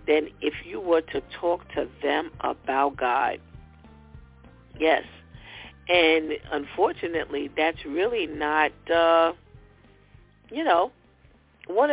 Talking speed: 100 wpm